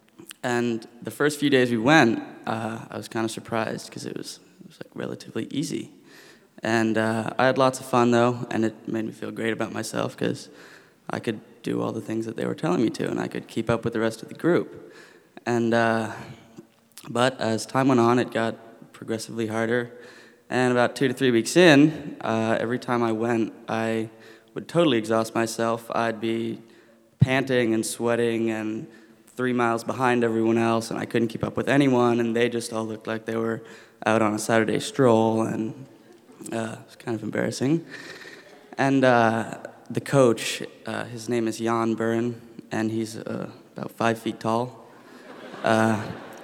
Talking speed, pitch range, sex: 185 wpm, 110-120 Hz, male